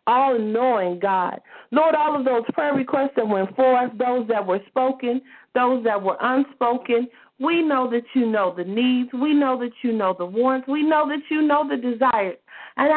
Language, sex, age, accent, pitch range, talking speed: English, female, 40-59, American, 210-265 Hz, 195 wpm